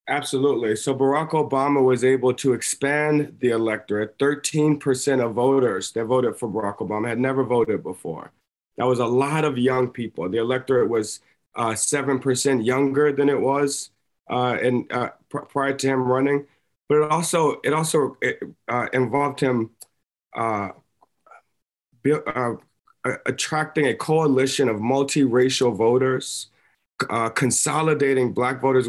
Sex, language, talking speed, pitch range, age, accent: male, English, 130 wpm, 125-145 Hz, 30-49, American